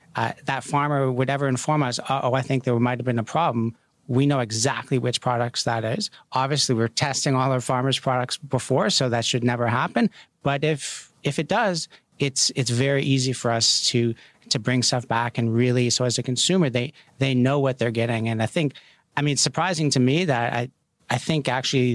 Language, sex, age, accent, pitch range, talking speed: English, male, 40-59, American, 115-140 Hz, 215 wpm